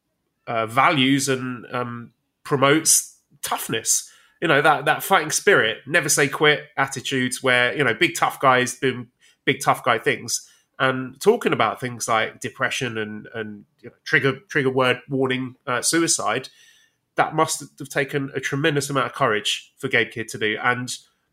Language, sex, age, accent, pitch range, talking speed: English, male, 30-49, British, 125-155 Hz, 155 wpm